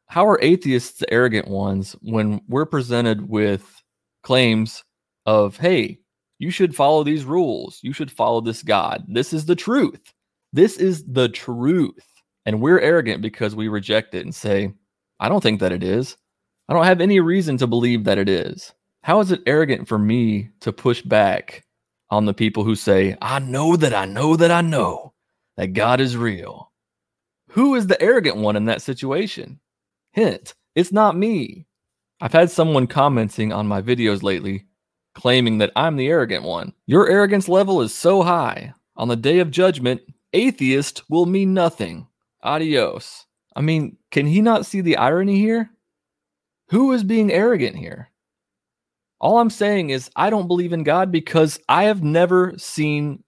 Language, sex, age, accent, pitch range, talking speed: English, male, 30-49, American, 110-170 Hz, 170 wpm